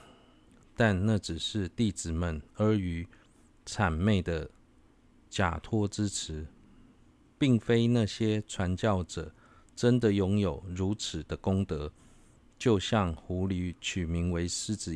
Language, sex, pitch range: Chinese, male, 85-105 Hz